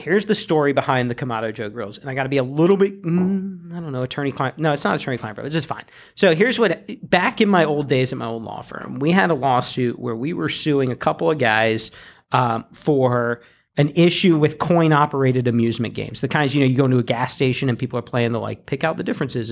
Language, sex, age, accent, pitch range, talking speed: English, male, 40-59, American, 125-165 Hz, 255 wpm